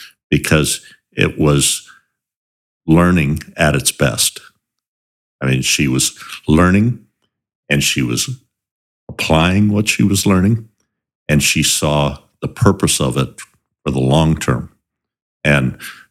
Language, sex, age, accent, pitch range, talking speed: English, male, 60-79, American, 70-85 Hz, 120 wpm